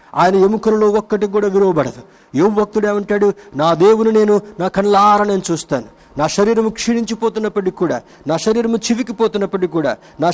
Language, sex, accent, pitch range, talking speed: Telugu, male, native, 155-205 Hz, 145 wpm